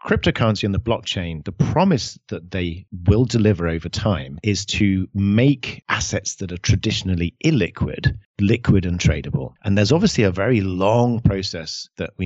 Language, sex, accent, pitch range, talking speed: English, male, British, 90-110 Hz, 155 wpm